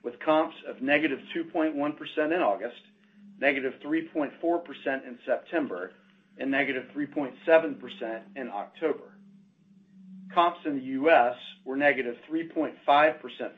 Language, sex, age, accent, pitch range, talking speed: English, male, 40-59, American, 135-190 Hz, 100 wpm